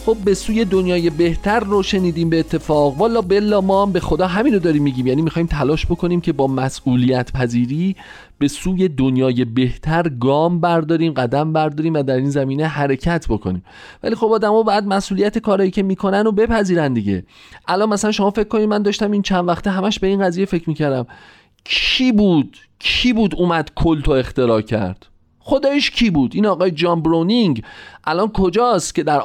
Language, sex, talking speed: Persian, male, 175 wpm